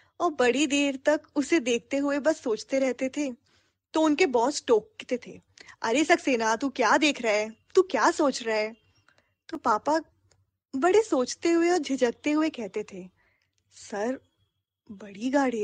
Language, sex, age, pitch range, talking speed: Hindi, female, 10-29, 200-300 Hz, 155 wpm